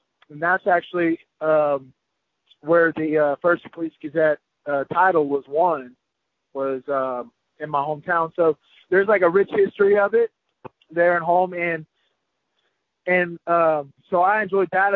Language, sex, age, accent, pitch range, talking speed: English, male, 30-49, American, 150-175 Hz, 150 wpm